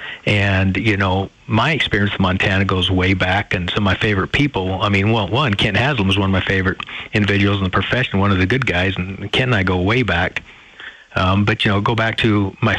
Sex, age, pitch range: male, 40-59, 95-115 Hz